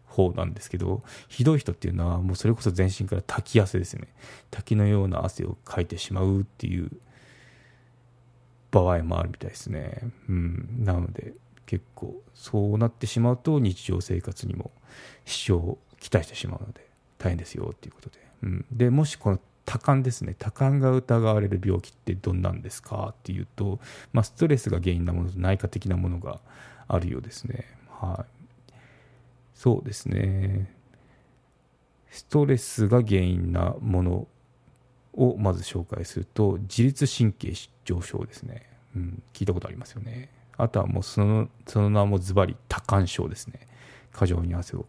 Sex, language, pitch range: male, Japanese, 95-125 Hz